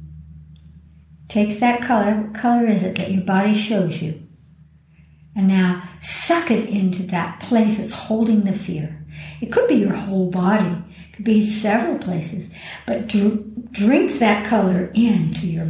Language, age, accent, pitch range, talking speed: English, 60-79, American, 160-225 Hz, 155 wpm